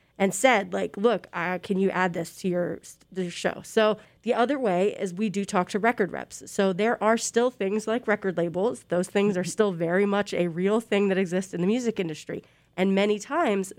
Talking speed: 220 wpm